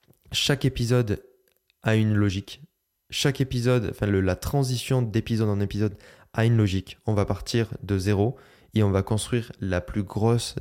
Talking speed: 165 wpm